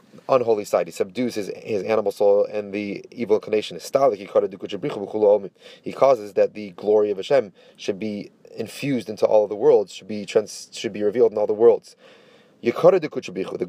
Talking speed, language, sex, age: 170 wpm, English, male, 30-49